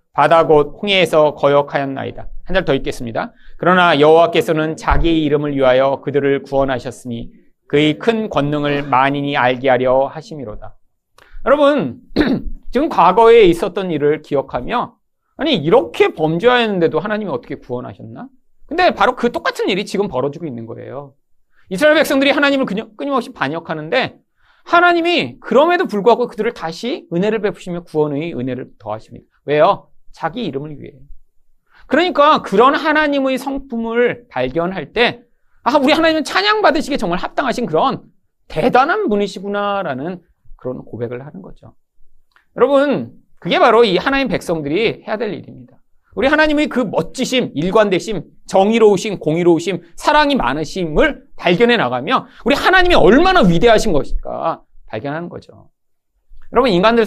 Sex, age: male, 40-59